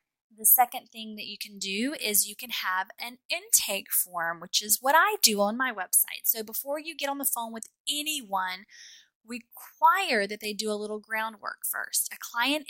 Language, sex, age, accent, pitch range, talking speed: English, female, 10-29, American, 200-235 Hz, 195 wpm